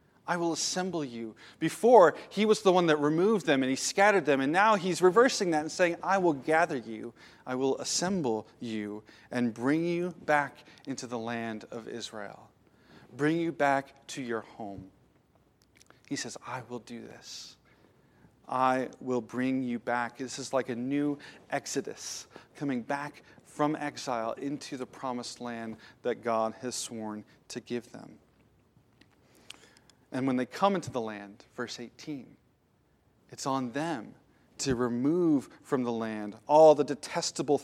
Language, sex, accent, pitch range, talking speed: English, male, American, 125-165 Hz, 155 wpm